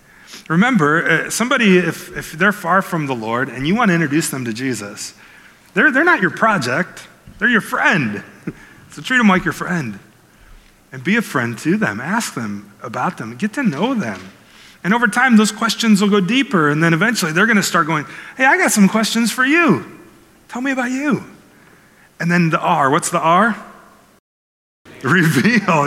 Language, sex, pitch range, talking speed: English, male, 140-210 Hz, 185 wpm